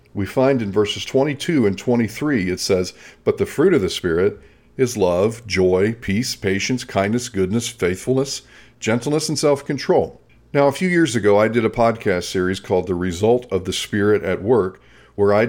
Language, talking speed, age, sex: English, 180 wpm, 40-59, male